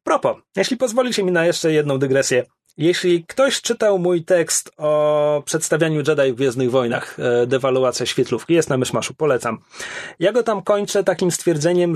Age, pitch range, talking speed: 30-49, 145-195 Hz, 155 wpm